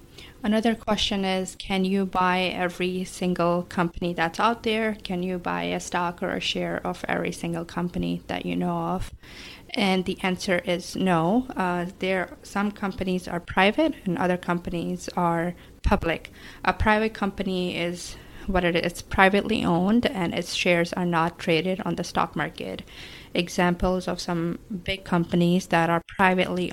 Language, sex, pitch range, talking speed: English, female, 170-190 Hz, 160 wpm